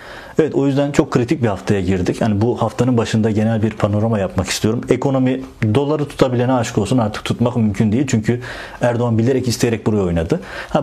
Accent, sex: native, male